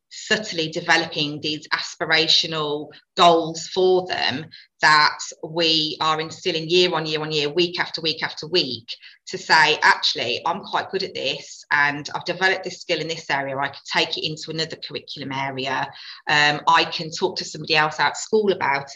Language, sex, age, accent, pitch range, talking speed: English, female, 30-49, British, 150-175 Hz, 175 wpm